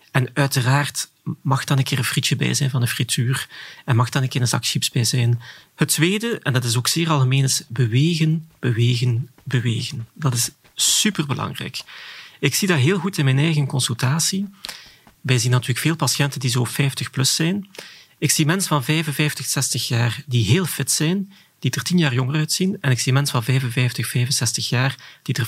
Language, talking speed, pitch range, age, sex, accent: Dutch, 200 wpm, 125-150 Hz, 40-59, male, Belgian